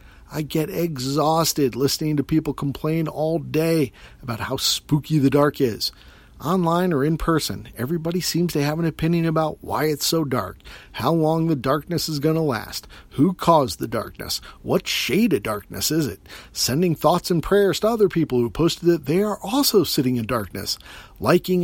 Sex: male